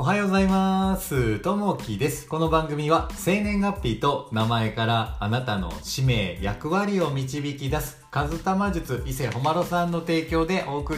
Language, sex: Japanese, male